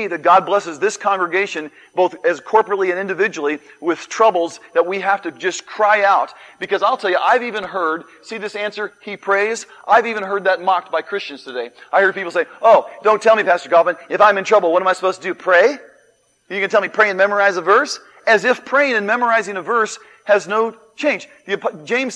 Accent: American